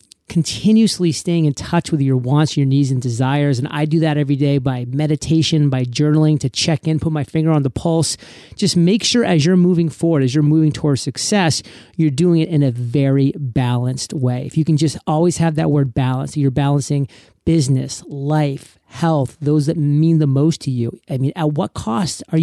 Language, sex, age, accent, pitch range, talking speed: English, male, 40-59, American, 140-175 Hz, 205 wpm